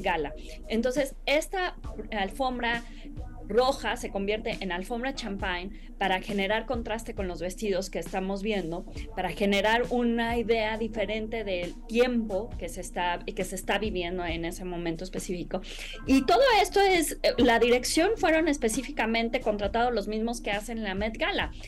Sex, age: female, 20-39